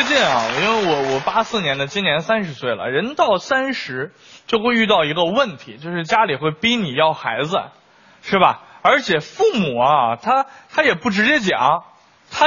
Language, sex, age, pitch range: Chinese, male, 20-39, 135-210 Hz